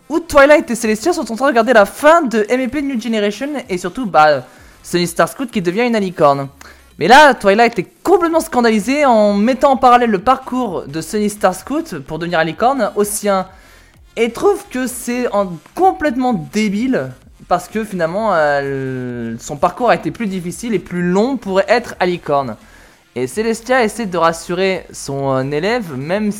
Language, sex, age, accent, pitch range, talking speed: French, male, 20-39, French, 165-240 Hz, 175 wpm